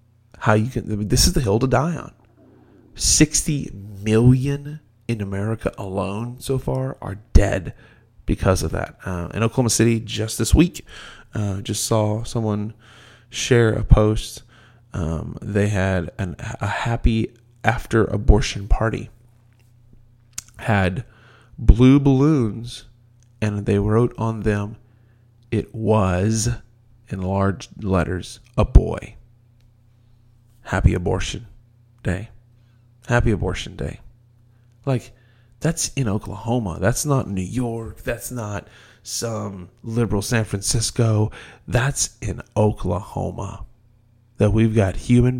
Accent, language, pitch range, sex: American, English, 100-120 Hz, male